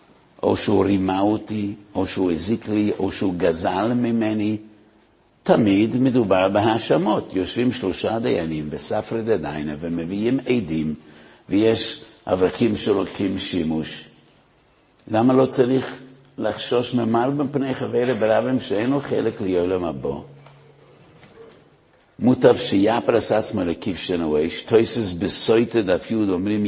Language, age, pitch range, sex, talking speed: Hebrew, 60-79, 100-130 Hz, male, 105 wpm